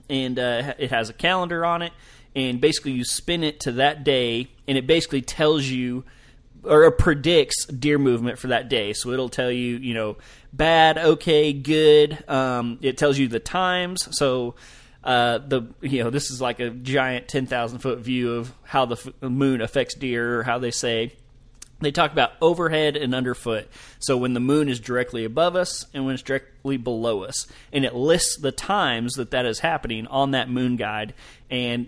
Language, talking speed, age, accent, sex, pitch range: English, 190 wpm, 20-39, American, male, 125-145 Hz